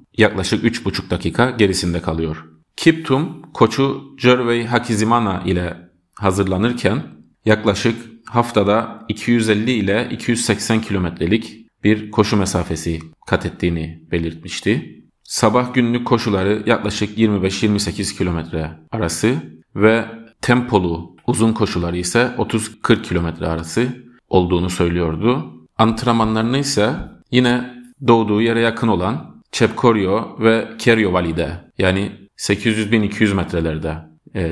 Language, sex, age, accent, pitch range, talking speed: Turkish, male, 40-59, native, 90-115 Hz, 95 wpm